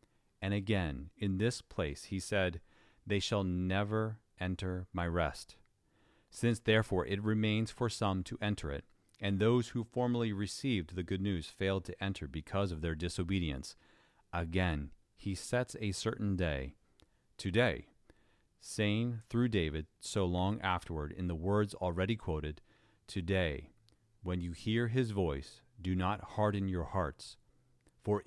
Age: 40-59